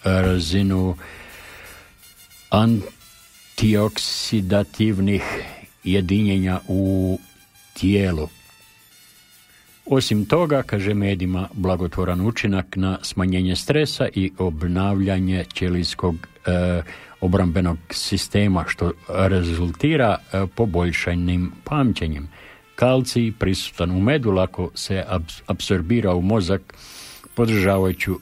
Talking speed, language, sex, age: 75 wpm, English, male, 60-79